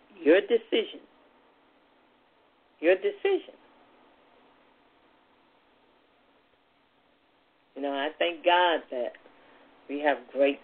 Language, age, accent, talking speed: English, 50-69, American, 75 wpm